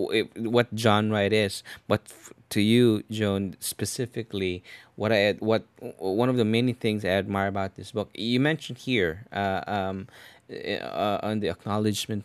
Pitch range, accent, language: 95-110 Hz, Filipino, English